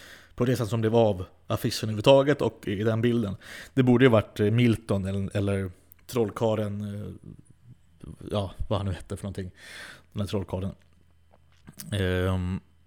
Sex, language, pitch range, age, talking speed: male, Swedish, 100-130 Hz, 30-49, 145 wpm